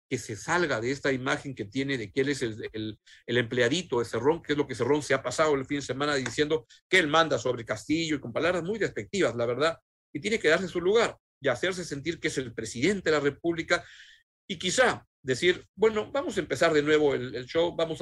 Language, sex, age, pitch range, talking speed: Spanish, male, 50-69, 130-165 Hz, 240 wpm